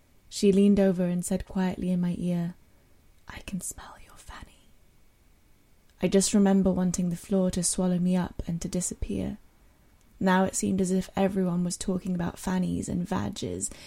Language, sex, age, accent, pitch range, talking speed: English, female, 10-29, British, 170-195 Hz, 170 wpm